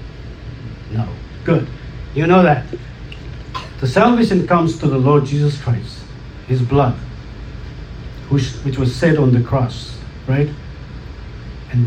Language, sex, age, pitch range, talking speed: English, male, 60-79, 125-180 Hz, 115 wpm